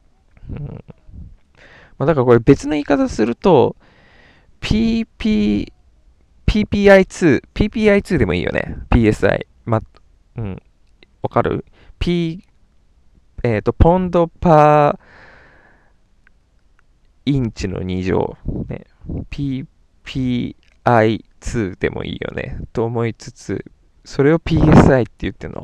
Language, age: Japanese, 20-39